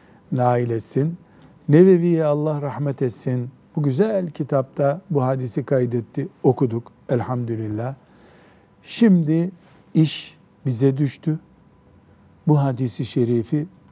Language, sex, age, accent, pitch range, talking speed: Turkish, male, 60-79, native, 130-180 Hz, 90 wpm